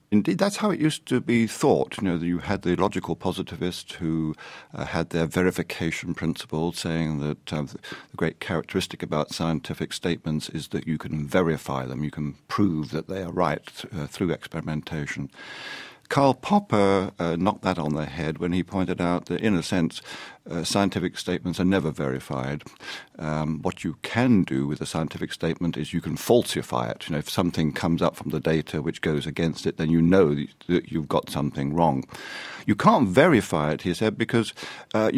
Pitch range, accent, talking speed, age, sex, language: 80-95 Hz, British, 190 wpm, 50-69, male, English